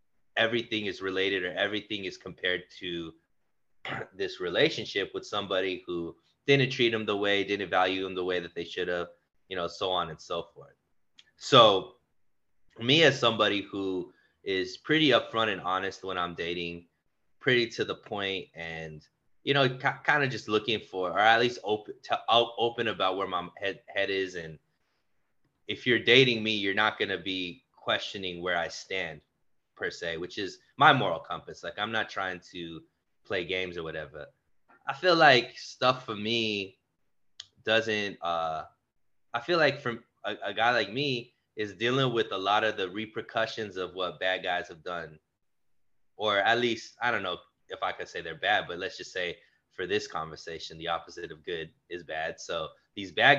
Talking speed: 180 wpm